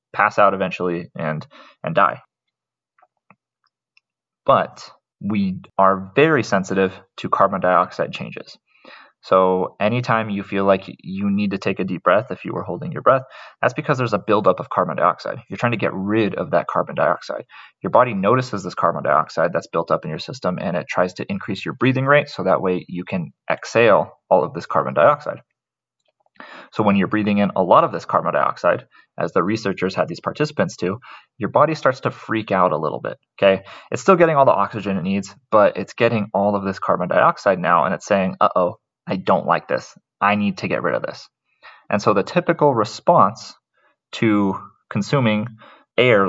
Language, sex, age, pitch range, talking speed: English, male, 20-39, 95-115 Hz, 195 wpm